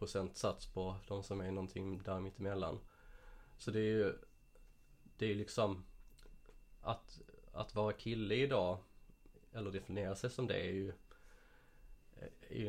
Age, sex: 20-39, male